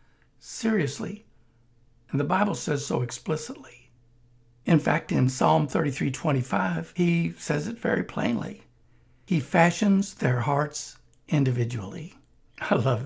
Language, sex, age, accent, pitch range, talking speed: English, male, 60-79, American, 120-165 Hz, 115 wpm